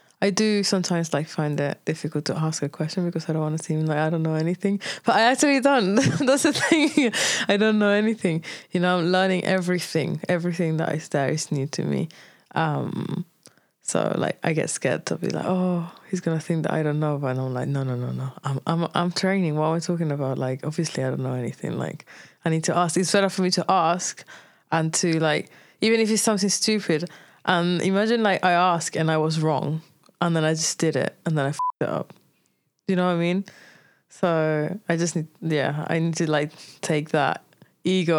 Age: 20-39